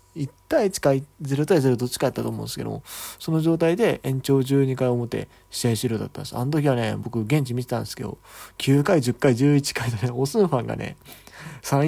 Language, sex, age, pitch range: Japanese, male, 20-39, 115-150 Hz